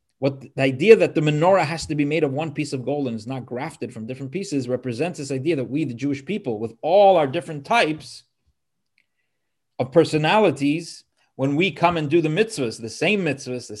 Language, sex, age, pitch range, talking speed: English, male, 30-49, 120-150 Hz, 210 wpm